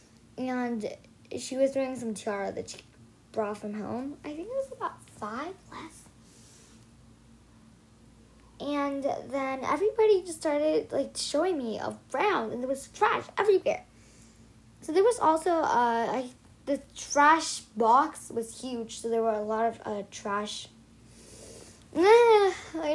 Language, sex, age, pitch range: English, female, 10-29, 205-285 Hz